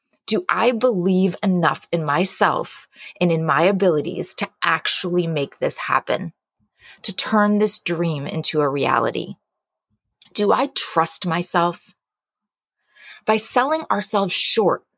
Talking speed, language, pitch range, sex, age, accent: 120 wpm, English, 170-225 Hz, female, 20-39, American